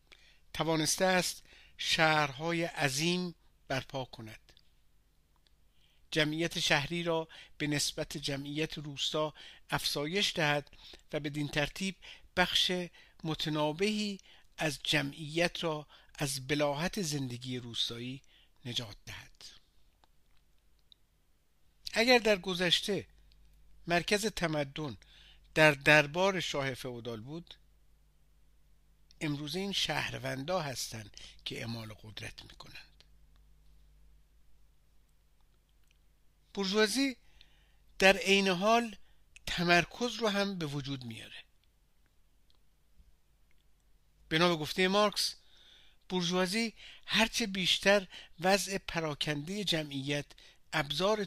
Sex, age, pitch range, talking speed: male, 50-69, 110-175 Hz, 80 wpm